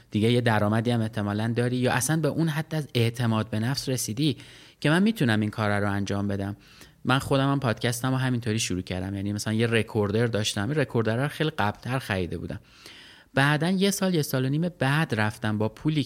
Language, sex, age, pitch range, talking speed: Persian, male, 30-49, 110-140 Hz, 200 wpm